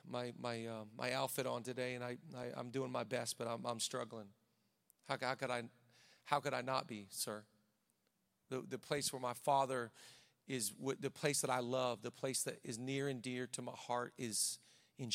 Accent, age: American, 40-59